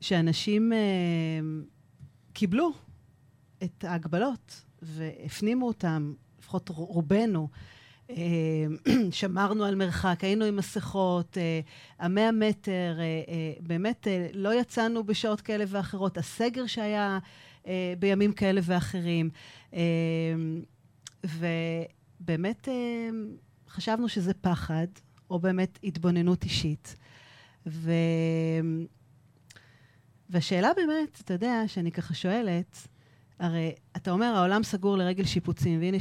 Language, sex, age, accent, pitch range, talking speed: Hebrew, female, 40-59, native, 160-205 Hz, 100 wpm